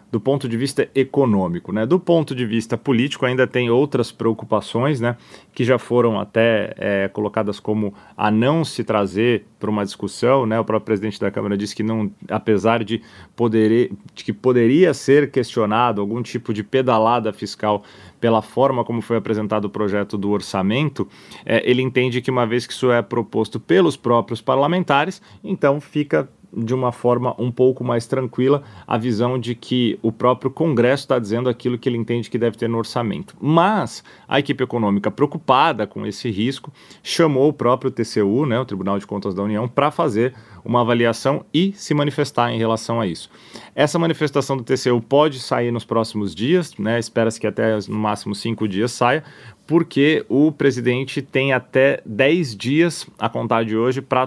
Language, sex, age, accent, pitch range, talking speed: Portuguese, male, 30-49, Brazilian, 110-135 Hz, 175 wpm